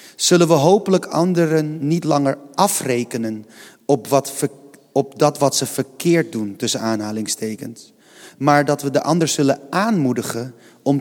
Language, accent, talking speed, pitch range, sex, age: Dutch, Dutch, 130 wpm, 130-180 Hz, male, 30-49